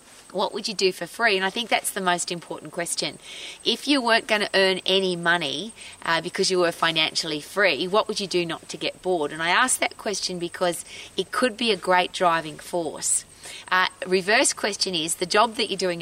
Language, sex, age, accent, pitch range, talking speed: English, female, 30-49, Australian, 170-210 Hz, 215 wpm